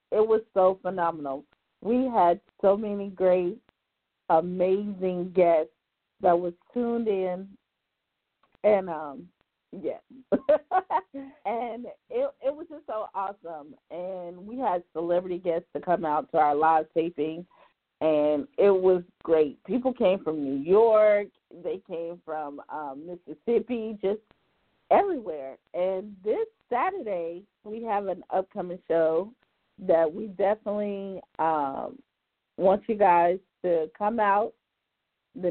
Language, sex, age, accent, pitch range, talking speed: English, female, 40-59, American, 175-225 Hz, 120 wpm